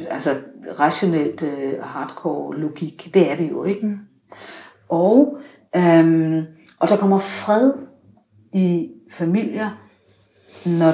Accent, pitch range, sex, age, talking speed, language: native, 160-210 Hz, female, 60-79, 95 wpm, Danish